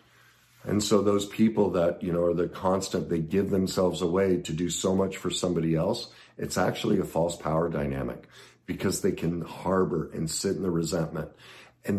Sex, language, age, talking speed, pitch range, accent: male, English, 50-69, 185 wpm, 85-110 Hz, American